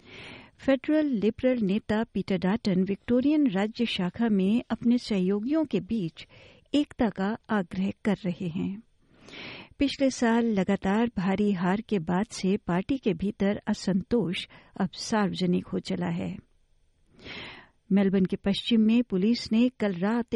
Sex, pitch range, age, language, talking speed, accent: female, 190-240 Hz, 60-79, Hindi, 130 wpm, native